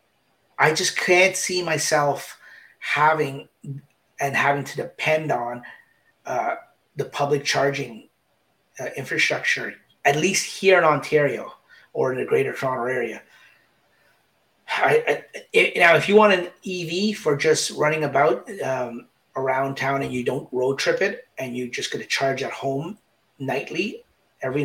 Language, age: English, 30-49